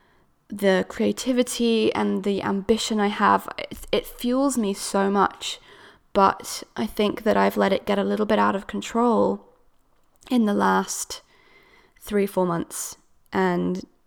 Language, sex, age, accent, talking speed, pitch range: English, female, 20-39, British, 140 wpm, 190-230 Hz